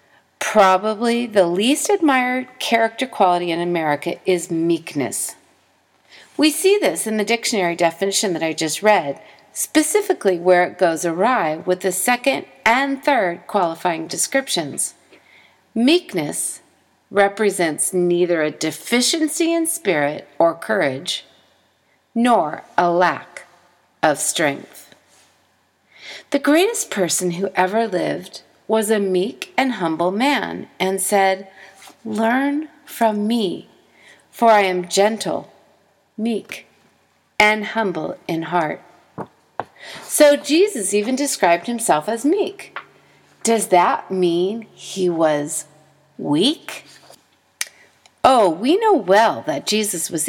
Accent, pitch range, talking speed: American, 175-245 Hz, 110 wpm